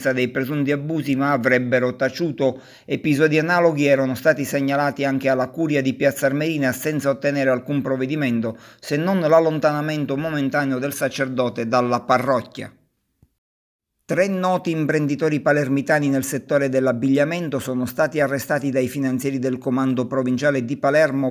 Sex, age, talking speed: male, 50-69, 130 wpm